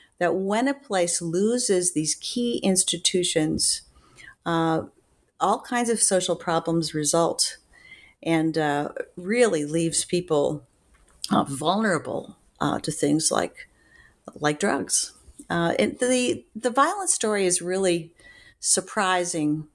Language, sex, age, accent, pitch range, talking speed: English, female, 50-69, American, 160-200 Hz, 110 wpm